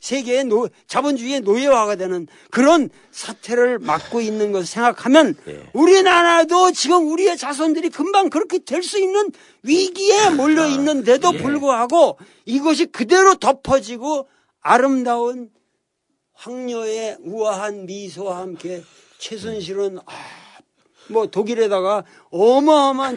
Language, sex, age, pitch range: Korean, male, 50-69, 210-315 Hz